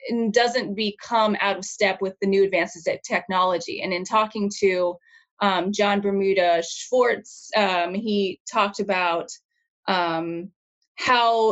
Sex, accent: female, American